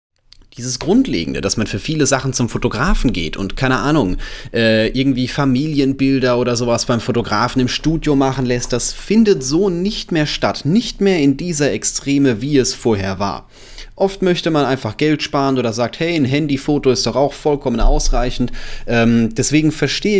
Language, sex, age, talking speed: German, male, 30-49, 170 wpm